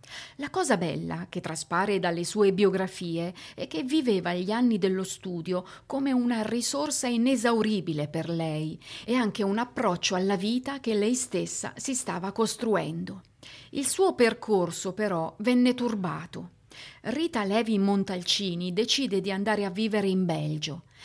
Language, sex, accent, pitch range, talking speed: Italian, female, native, 180-235 Hz, 140 wpm